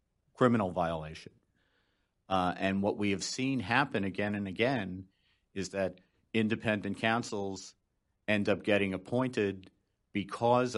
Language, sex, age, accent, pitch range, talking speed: English, male, 50-69, American, 95-110 Hz, 115 wpm